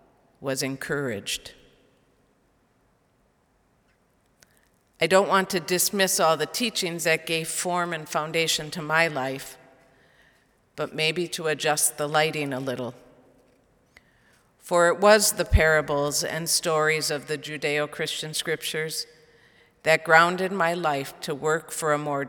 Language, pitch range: English, 135-165 Hz